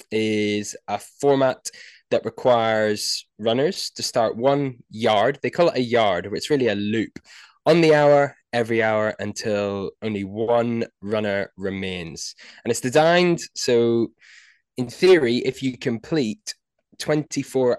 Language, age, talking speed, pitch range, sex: English, 20-39, 130 wpm, 100-135 Hz, male